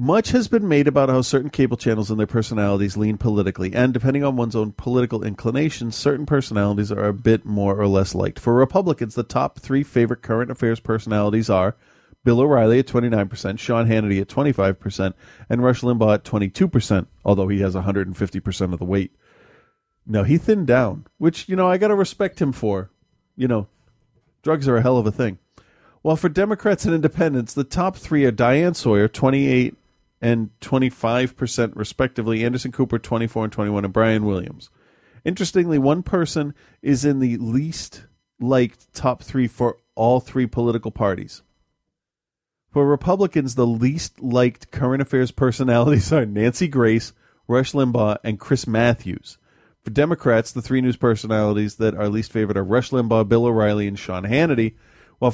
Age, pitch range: 40-59, 105-135 Hz